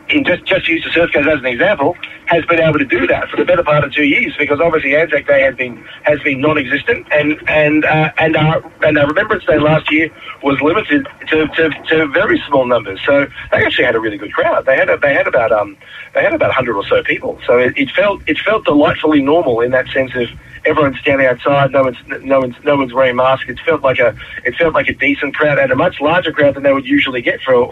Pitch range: 120-155 Hz